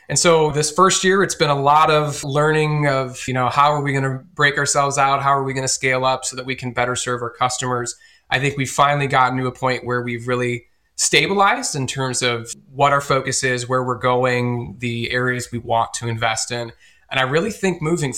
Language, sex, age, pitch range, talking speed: English, male, 20-39, 115-135 Hz, 230 wpm